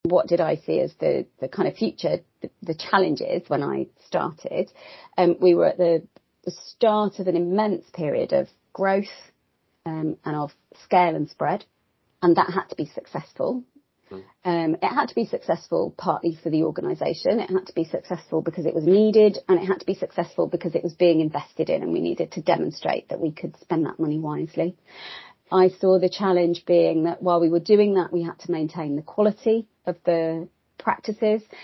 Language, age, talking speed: English, 30-49, 195 wpm